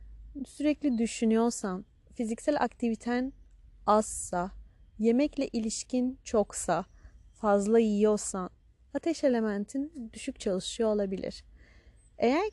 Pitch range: 185-260 Hz